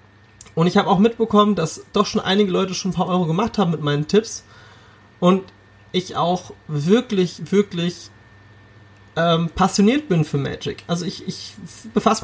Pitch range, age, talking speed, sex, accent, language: 150-190 Hz, 30-49, 160 wpm, male, German, German